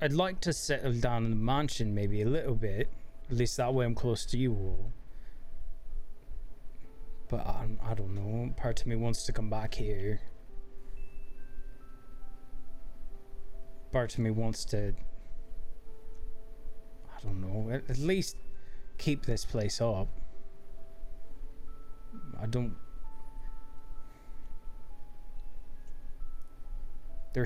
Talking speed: 115 wpm